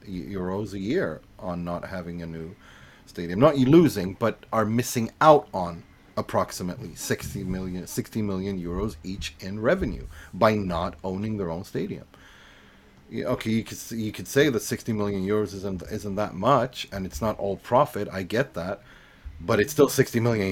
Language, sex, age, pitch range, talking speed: English, male, 30-49, 90-110 Hz, 175 wpm